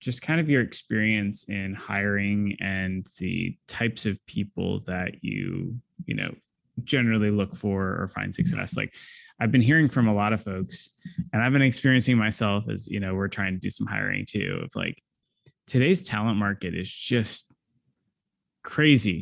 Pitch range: 100-125 Hz